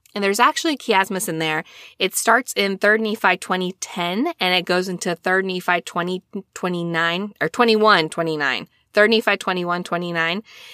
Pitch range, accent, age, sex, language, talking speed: 165-225 Hz, American, 20-39, female, English, 145 wpm